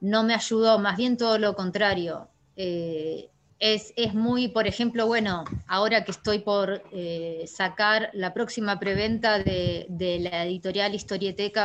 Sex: female